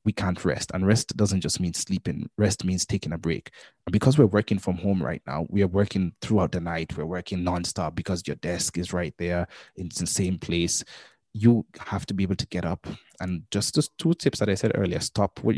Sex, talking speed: male, 230 wpm